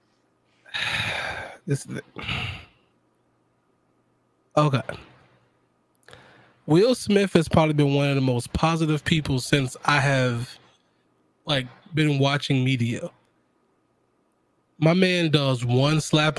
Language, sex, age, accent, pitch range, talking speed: English, male, 20-39, American, 130-160 Hz, 95 wpm